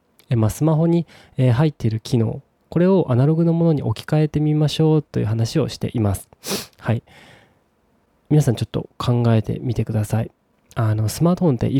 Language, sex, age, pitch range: Japanese, male, 20-39, 115-145 Hz